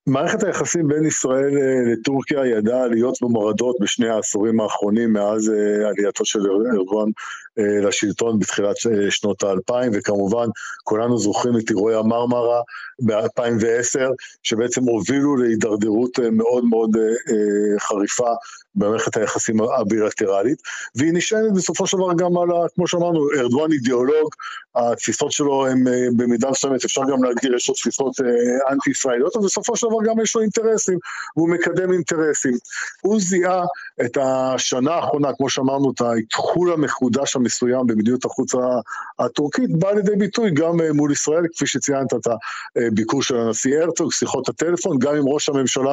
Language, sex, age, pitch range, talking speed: Hebrew, male, 50-69, 120-160 Hz, 135 wpm